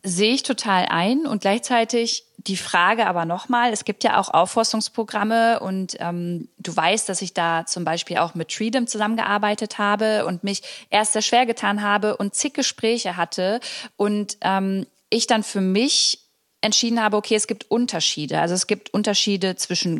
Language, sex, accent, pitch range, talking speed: German, female, German, 190-225 Hz, 170 wpm